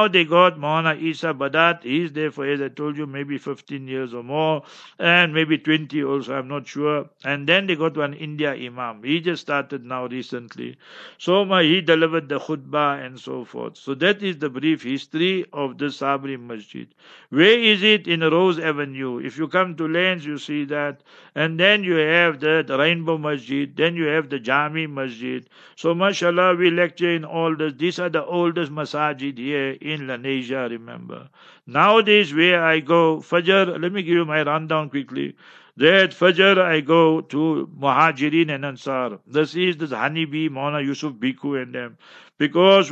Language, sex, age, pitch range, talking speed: English, male, 60-79, 140-170 Hz, 180 wpm